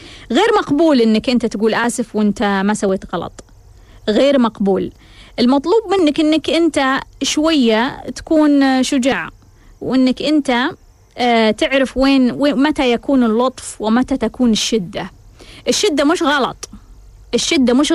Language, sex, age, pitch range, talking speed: Arabic, female, 20-39, 220-270 Hz, 115 wpm